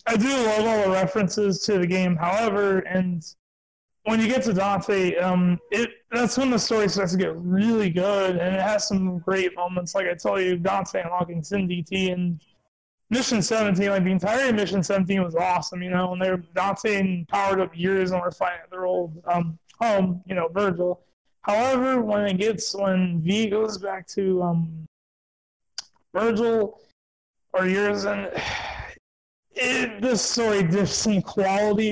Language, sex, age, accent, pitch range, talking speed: English, male, 20-39, American, 180-210 Hz, 170 wpm